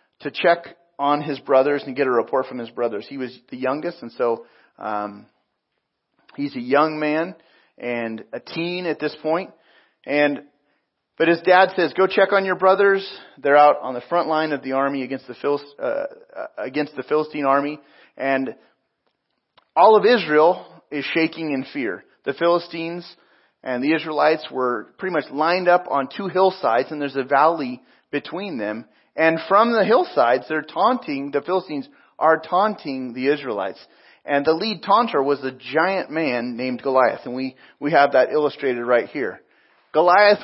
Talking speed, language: 170 wpm, English